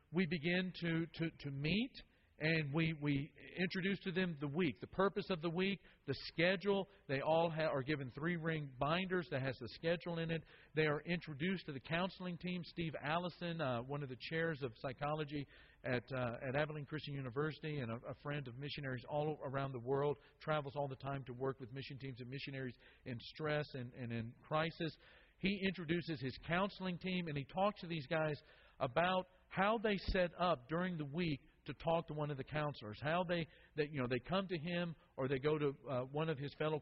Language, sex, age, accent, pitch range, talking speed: English, male, 50-69, American, 135-175 Hz, 210 wpm